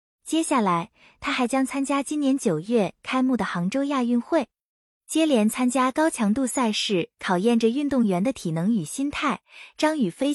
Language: Chinese